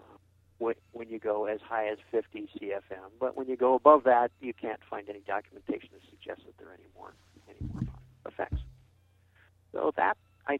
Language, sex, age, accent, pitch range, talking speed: English, male, 50-69, American, 100-120 Hz, 180 wpm